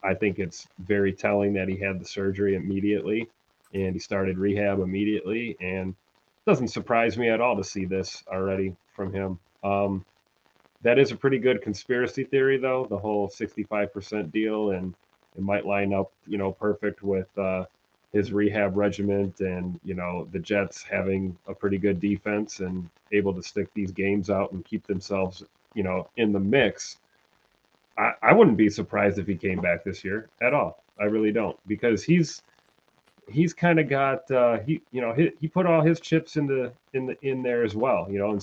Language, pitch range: English, 95-110 Hz